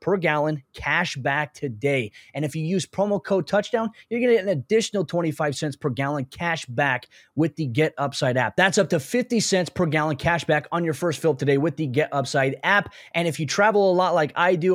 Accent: American